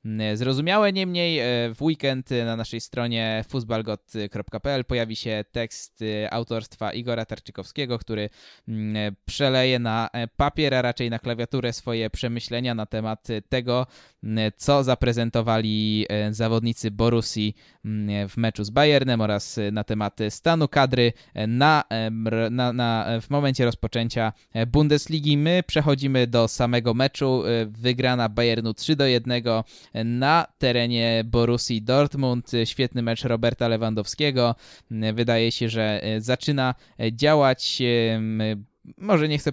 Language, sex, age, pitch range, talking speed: Polish, male, 20-39, 110-130 Hz, 110 wpm